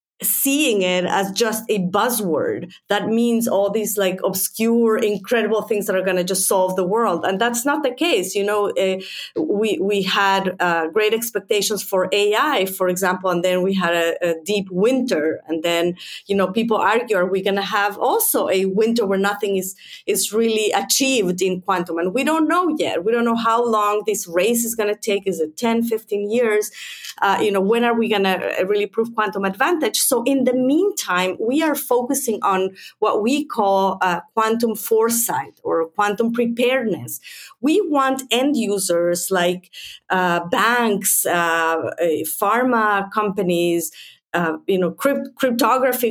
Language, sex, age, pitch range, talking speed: English, female, 30-49, 190-235 Hz, 175 wpm